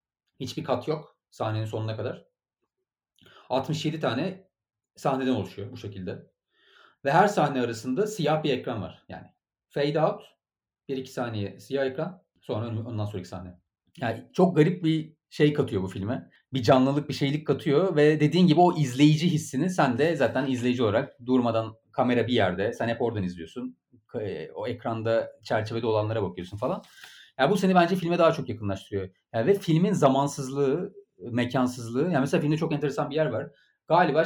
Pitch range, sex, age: 110-160 Hz, male, 40-59